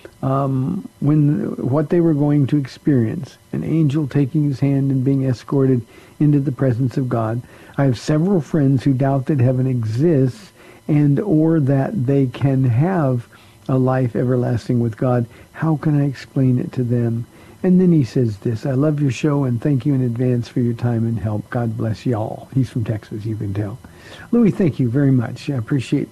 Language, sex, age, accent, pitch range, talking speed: English, male, 50-69, American, 120-145 Hz, 190 wpm